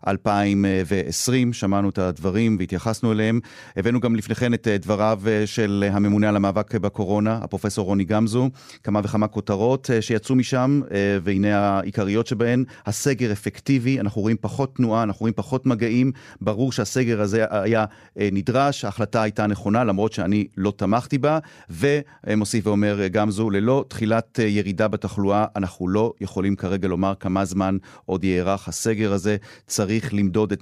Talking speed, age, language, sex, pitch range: 140 wpm, 40-59, Hebrew, male, 95-115 Hz